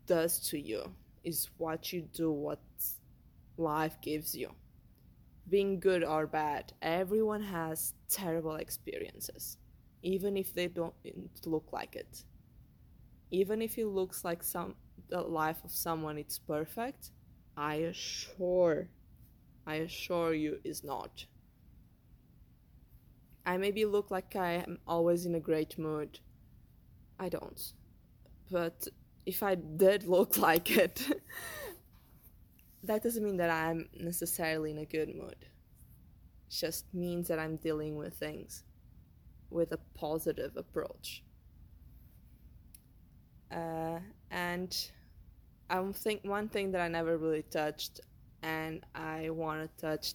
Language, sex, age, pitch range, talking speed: English, female, 20-39, 150-180 Hz, 125 wpm